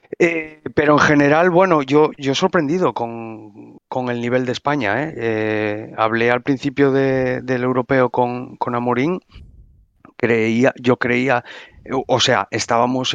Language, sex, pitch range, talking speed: Spanish, male, 115-135 Hz, 145 wpm